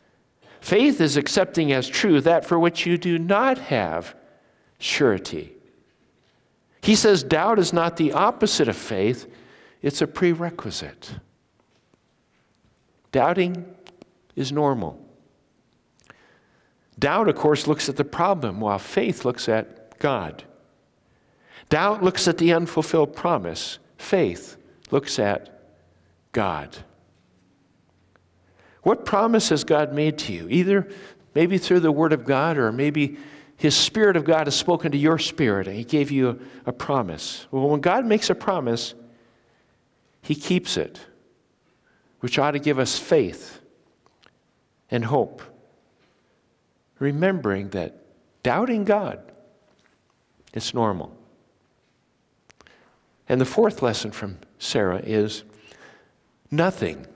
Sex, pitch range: male, 115-175 Hz